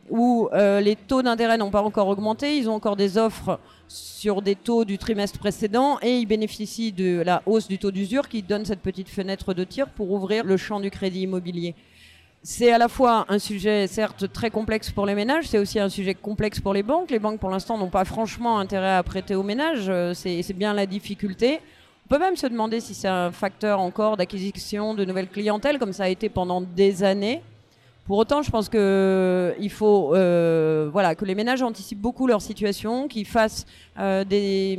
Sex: female